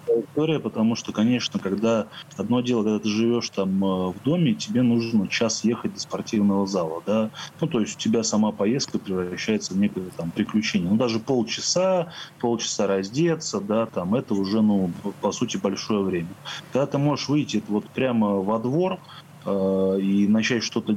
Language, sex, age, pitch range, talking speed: Russian, male, 20-39, 100-130 Hz, 160 wpm